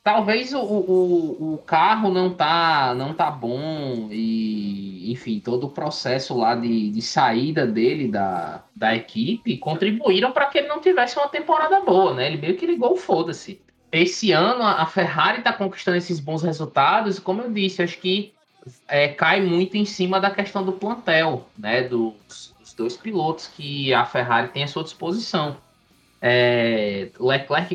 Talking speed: 160 wpm